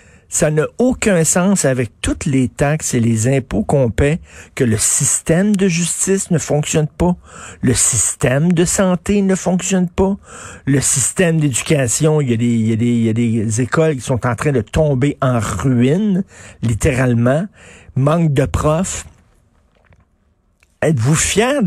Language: French